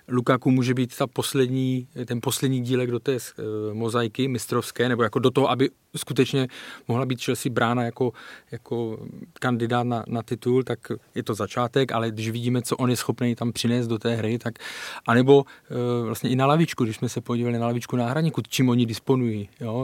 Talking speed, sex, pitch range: 190 wpm, male, 120-135 Hz